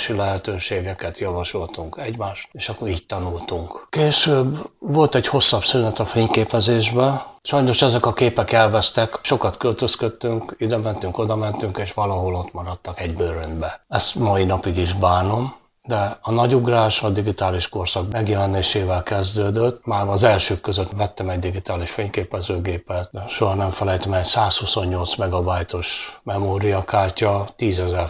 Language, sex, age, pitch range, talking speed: Hungarian, male, 60-79, 95-115 Hz, 135 wpm